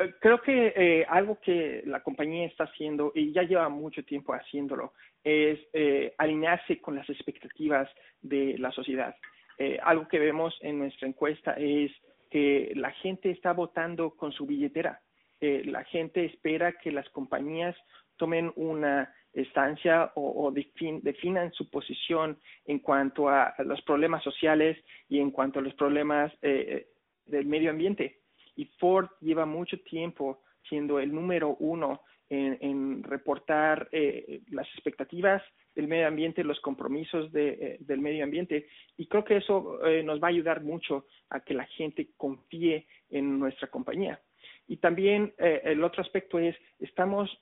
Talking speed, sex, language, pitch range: 155 wpm, male, English, 145-170 Hz